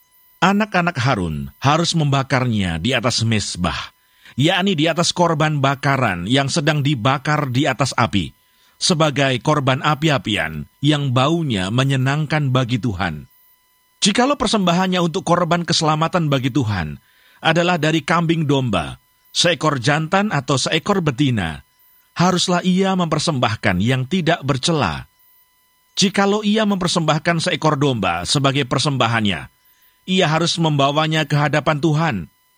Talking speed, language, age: 110 wpm, Indonesian, 40-59